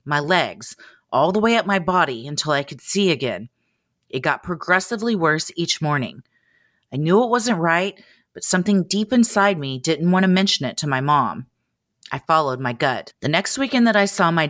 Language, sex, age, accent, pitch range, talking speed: English, female, 30-49, American, 140-190 Hz, 200 wpm